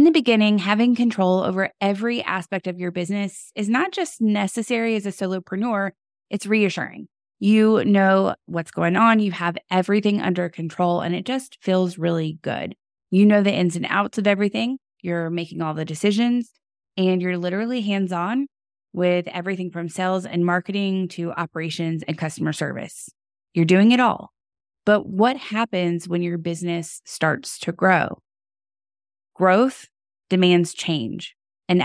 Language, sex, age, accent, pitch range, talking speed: English, female, 20-39, American, 170-215 Hz, 155 wpm